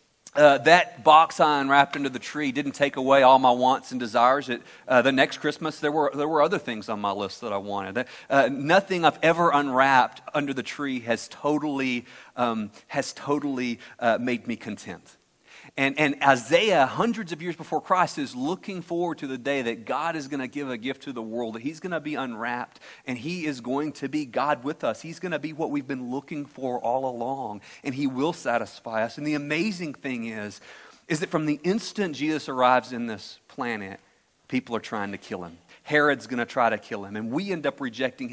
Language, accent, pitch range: English, American, 130-160 Hz